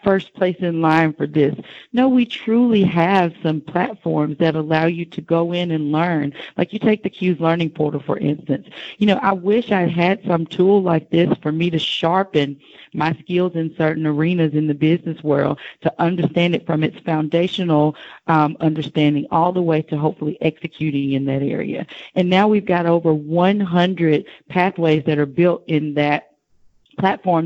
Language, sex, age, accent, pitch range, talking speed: English, female, 40-59, American, 155-180 Hz, 180 wpm